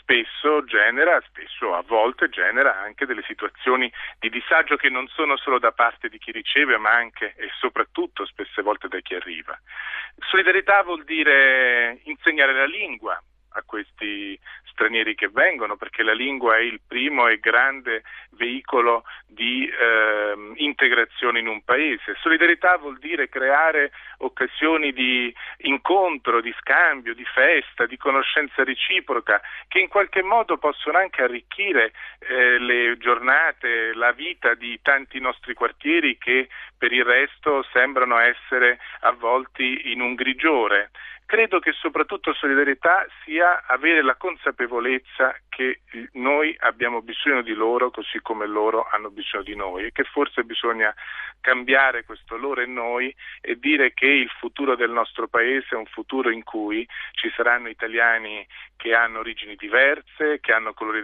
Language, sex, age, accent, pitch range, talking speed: Italian, male, 40-59, native, 120-165 Hz, 145 wpm